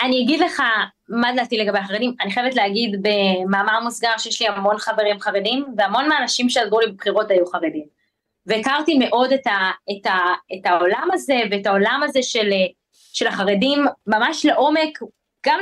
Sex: female